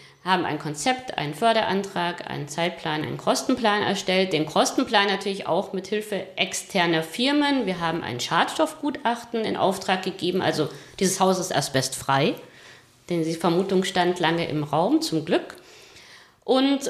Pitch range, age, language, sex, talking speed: 175-235 Hz, 50-69, German, female, 140 wpm